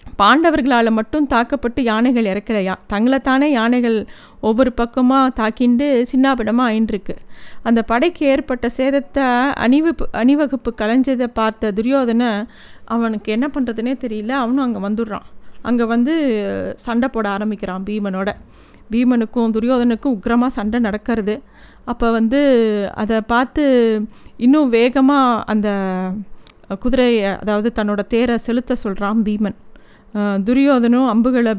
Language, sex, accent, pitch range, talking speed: Tamil, female, native, 210-250 Hz, 105 wpm